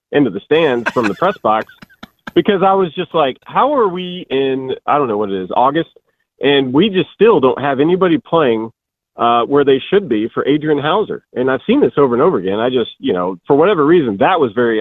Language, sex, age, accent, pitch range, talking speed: English, male, 40-59, American, 120-165 Hz, 230 wpm